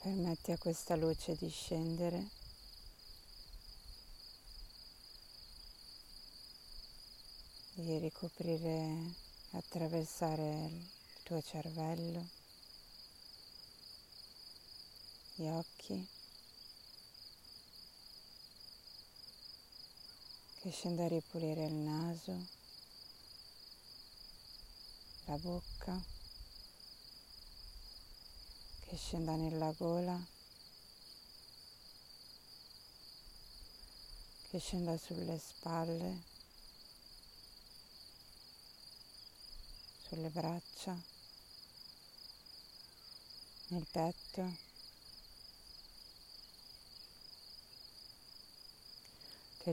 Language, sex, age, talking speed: Italian, female, 30-49, 40 wpm